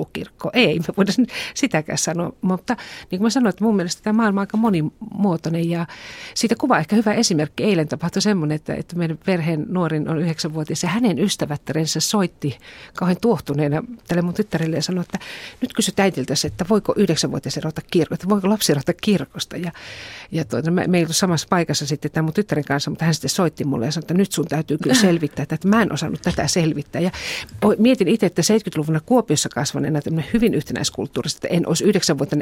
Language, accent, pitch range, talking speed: Finnish, native, 155-205 Hz, 180 wpm